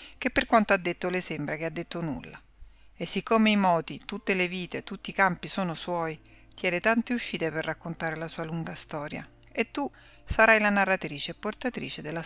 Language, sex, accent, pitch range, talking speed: Italian, female, native, 165-205 Hz, 195 wpm